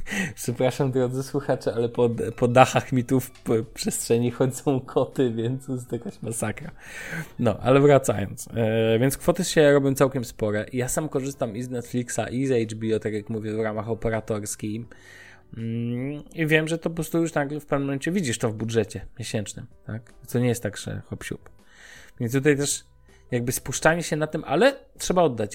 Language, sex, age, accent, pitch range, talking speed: Polish, male, 20-39, native, 110-135 Hz, 185 wpm